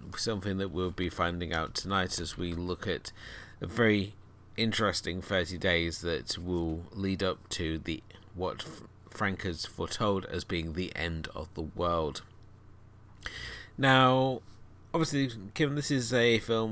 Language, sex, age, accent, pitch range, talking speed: English, male, 30-49, British, 85-105 Hz, 145 wpm